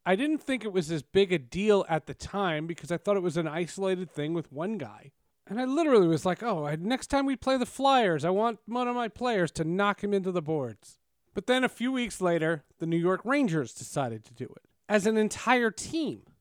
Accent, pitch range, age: American, 155-210 Hz, 40-59